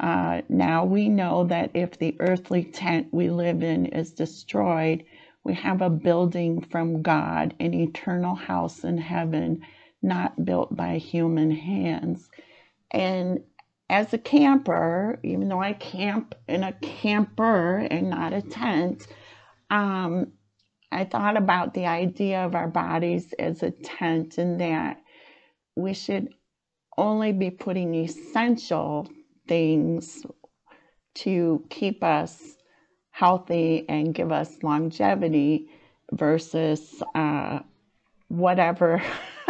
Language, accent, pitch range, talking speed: English, American, 160-190 Hz, 115 wpm